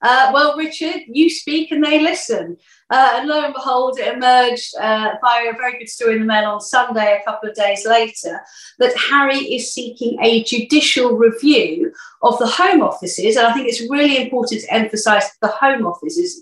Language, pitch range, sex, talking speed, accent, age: English, 215-270 Hz, female, 195 wpm, British, 40-59